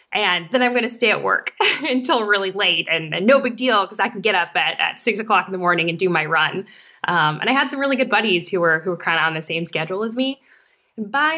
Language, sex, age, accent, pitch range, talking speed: English, female, 10-29, American, 170-230 Hz, 280 wpm